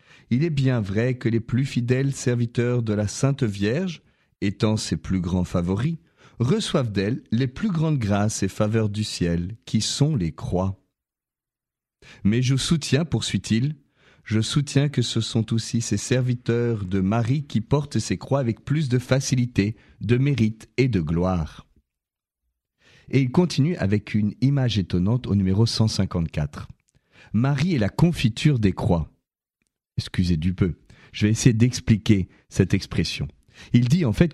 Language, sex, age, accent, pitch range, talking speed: French, male, 40-59, French, 100-135 Hz, 155 wpm